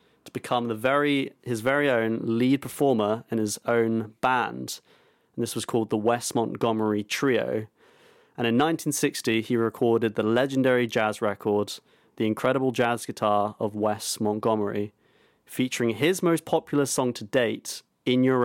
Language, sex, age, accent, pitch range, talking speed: English, male, 30-49, British, 115-145 Hz, 145 wpm